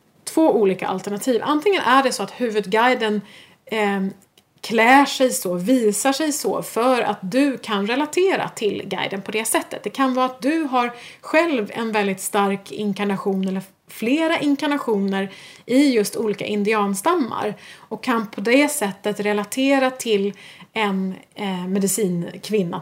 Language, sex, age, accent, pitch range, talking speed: Swedish, female, 30-49, native, 205-260 Hz, 135 wpm